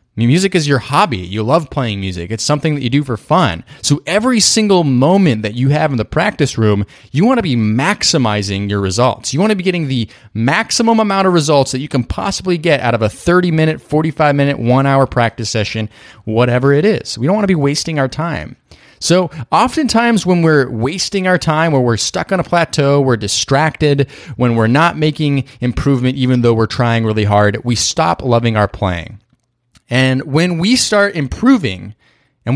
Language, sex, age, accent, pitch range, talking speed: English, male, 30-49, American, 110-155 Hz, 190 wpm